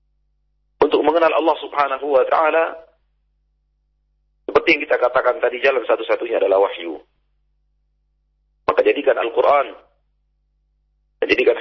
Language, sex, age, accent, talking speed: Indonesian, male, 40-59, native, 100 wpm